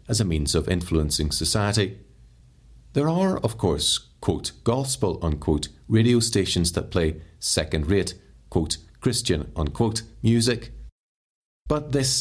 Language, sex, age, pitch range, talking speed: English, male, 40-59, 85-110 Hz, 120 wpm